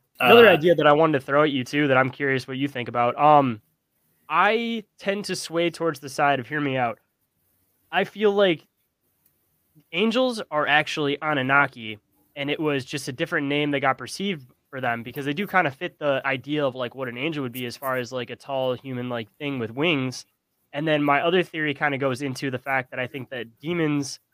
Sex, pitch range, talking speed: male, 125-155 Hz, 220 wpm